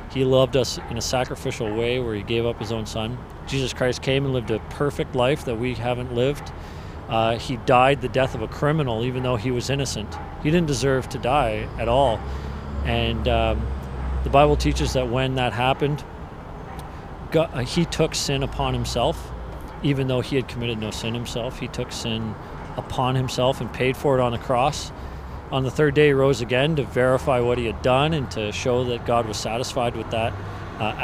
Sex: male